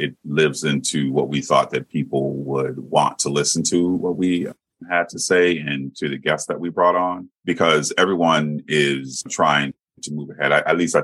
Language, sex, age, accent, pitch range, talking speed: English, male, 40-59, American, 70-75 Hz, 195 wpm